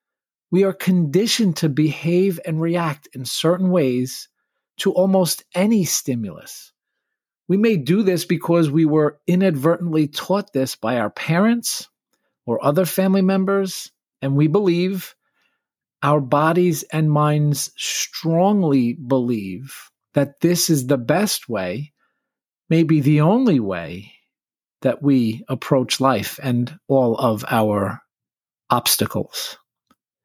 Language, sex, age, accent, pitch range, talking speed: English, male, 40-59, American, 135-180 Hz, 115 wpm